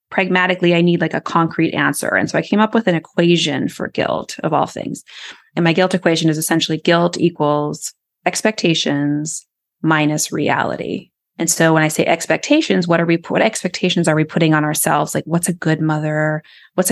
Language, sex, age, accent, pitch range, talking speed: English, female, 20-39, American, 160-200 Hz, 190 wpm